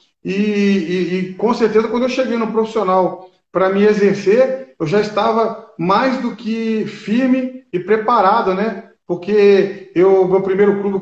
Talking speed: 150 wpm